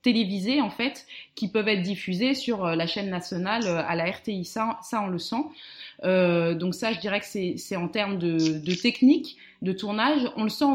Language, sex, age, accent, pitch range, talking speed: French, female, 20-39, French, 180-245 Hz, 205 wpm